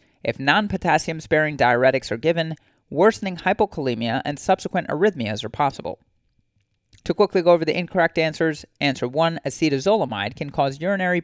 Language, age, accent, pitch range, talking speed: English, 30-49, American, 125-175 Hz, 135 wpm